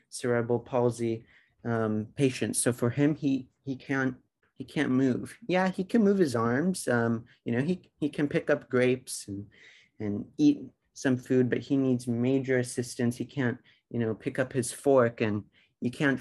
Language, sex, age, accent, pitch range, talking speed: English, male, 30-49, American, 115-135 Hz, 180 wpm